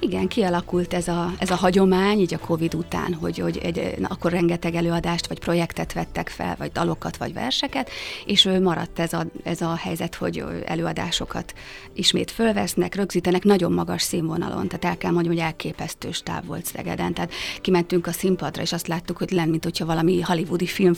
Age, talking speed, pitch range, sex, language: 30-49, 175 wpm, 170-185 Hz, female, Hungarian